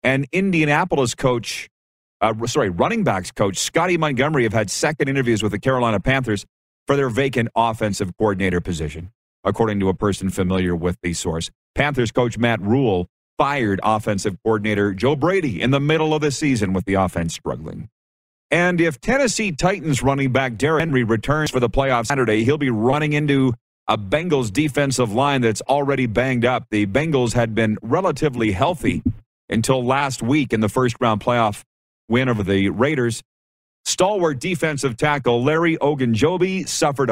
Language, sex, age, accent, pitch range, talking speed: English, male, 40-59, American, 105-140 Hz, 160 wpm